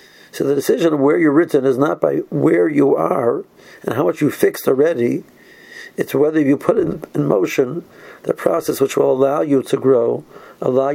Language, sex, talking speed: English, male, 185 wpm